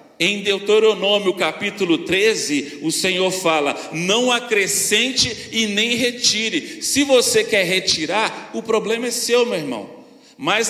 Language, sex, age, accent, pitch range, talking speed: Portuguese, male, 40-59, Brazilian, 195-265 Hz, 130 wpm